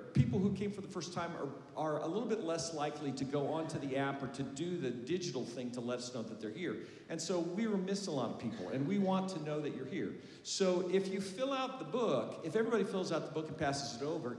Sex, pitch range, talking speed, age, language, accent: male, 135-185 Hz, 270 wpm, 50-69, English, American